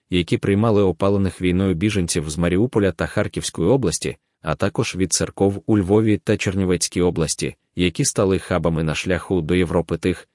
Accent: native